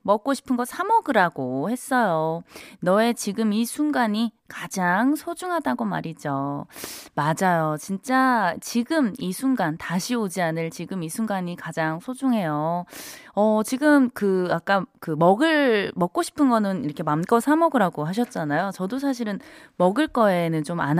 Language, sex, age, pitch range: Korean, female, 20-39, 165-245 Hz